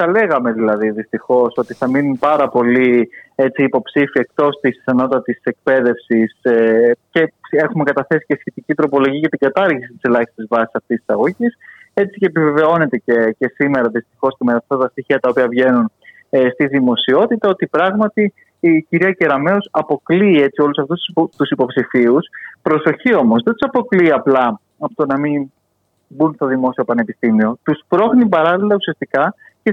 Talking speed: 155 wpm